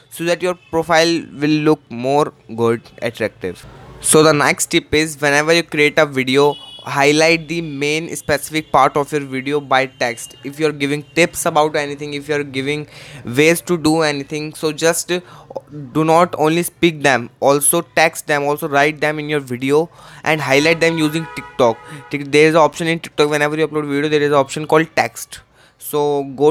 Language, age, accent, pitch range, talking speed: Hindi, 20-39, native, 140-160 Hz, 190 wpm